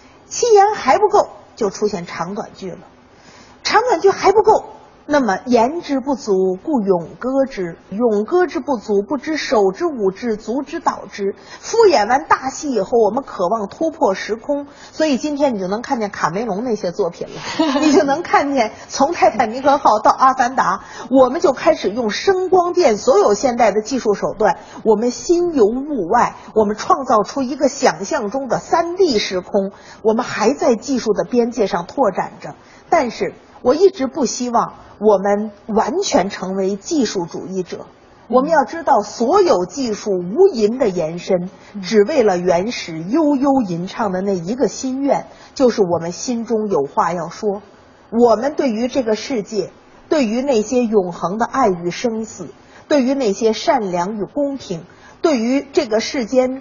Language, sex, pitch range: Chinese, female, 205-280 Hz